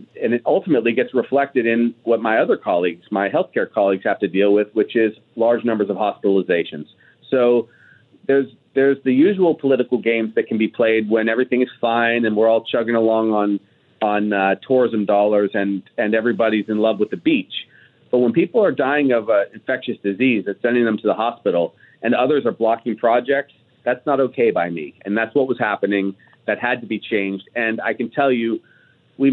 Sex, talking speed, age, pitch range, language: male, 200 wpm, 40-59, 110-130 Hz, English